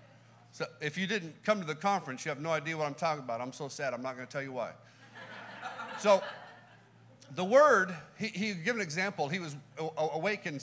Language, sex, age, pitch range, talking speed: English, male, 50-69, 135-180 Hz, 210 wpm